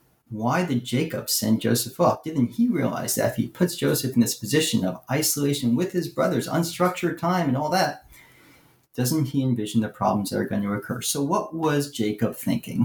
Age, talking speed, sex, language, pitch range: 40-59, 195 wpm, male, English, 115-145 Hz